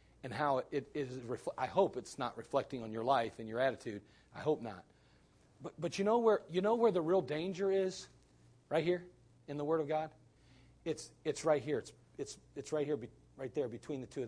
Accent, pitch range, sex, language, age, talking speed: American, 110-180 Hz, male, English, 40-59, 220 wpm